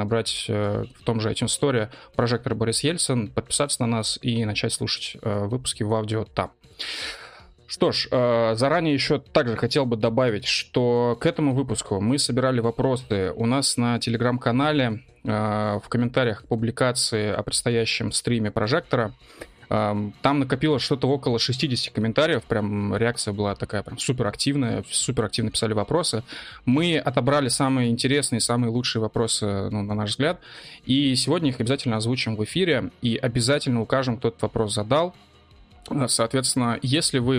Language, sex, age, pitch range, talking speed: Russian, male, 20-39, 110-135 Hz, 150 wpm